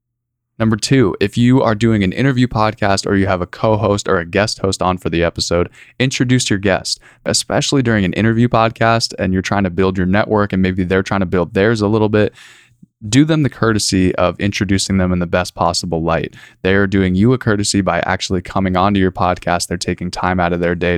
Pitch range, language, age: 95-115 Hz, English, 20-39